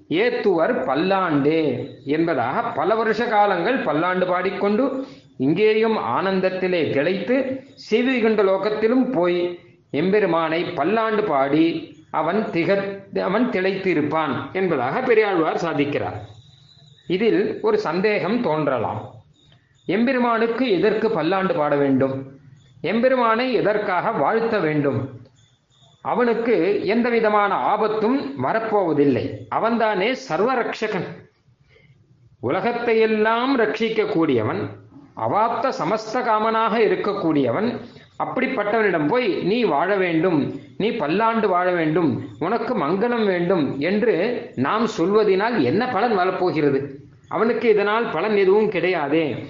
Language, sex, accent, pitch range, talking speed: Tamil, male, native, 145-220 Hz, 85 wpm